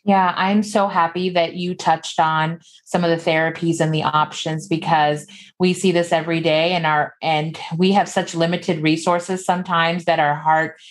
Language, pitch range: English, 155-190 Hz